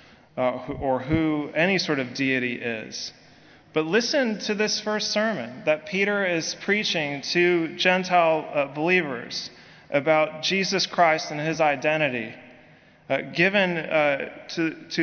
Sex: male